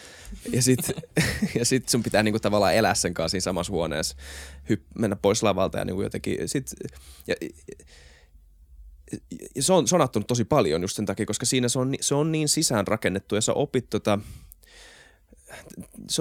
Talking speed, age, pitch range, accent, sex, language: 170 wpm, 20-39, 95-130 Hz, native, male, Finnish